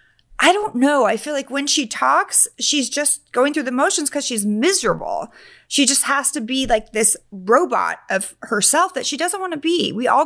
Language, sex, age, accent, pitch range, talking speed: English, female, 30-49, American, 235-310 Hz, 210 wpm